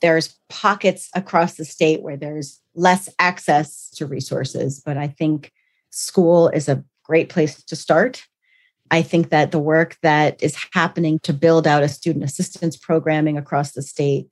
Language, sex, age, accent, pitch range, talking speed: English, female, 40-59, American, 150-180 Hz, 165 wpm